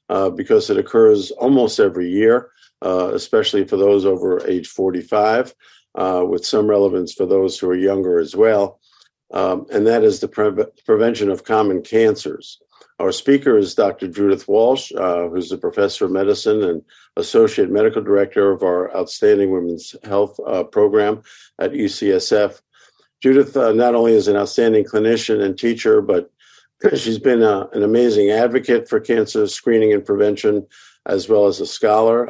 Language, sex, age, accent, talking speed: English, male, 50-69, American, 160 wpm